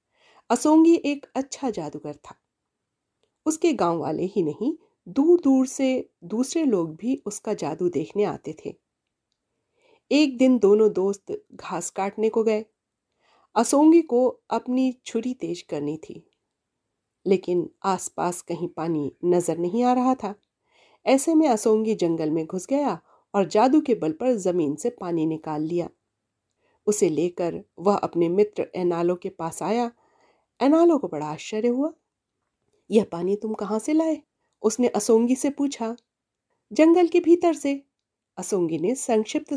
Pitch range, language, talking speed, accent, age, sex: 175-275 Hz, Hindi, 140 wpm, native, 40-59, female